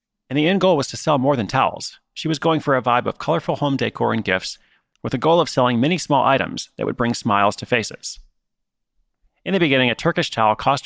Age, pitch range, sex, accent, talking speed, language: 30-49, 110-150 Hz, male, American, 240 wpm, English